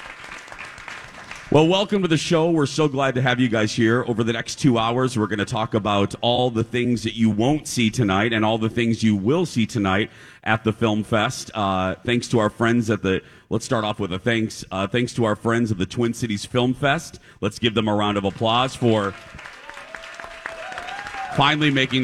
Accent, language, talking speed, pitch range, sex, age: American, English, 210 wpm, 105-135 Hz, male, 40-59